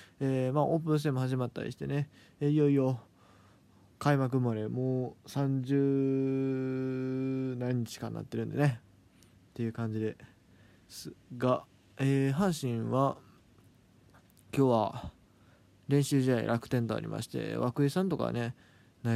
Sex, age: male, 20-39